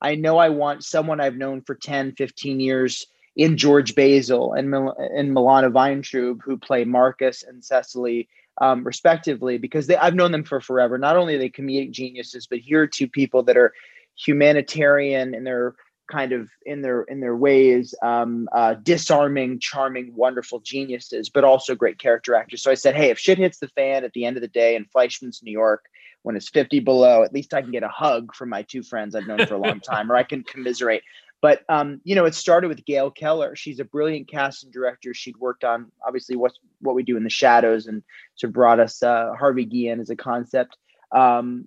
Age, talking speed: 30-49, 210 wpm